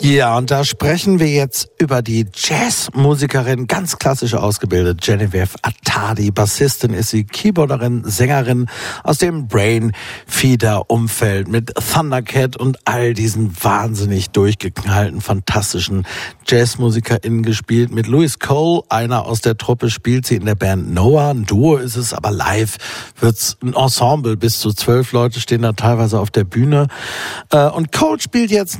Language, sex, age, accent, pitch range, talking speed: German, male, 60-79, German, 105-135 Hz, 140 wpm